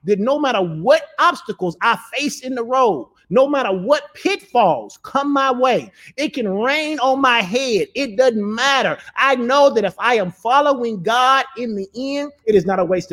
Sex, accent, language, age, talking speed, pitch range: male, American, English, 30-49, 190 wpm, 190-265 Hz